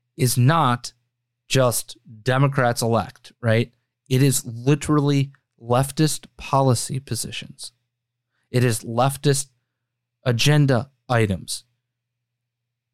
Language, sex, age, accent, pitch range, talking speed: English, male, 20-39, American, 120-140 Hz, 80 wpm